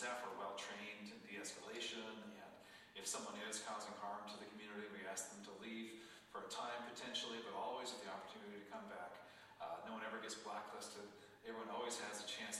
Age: 40-59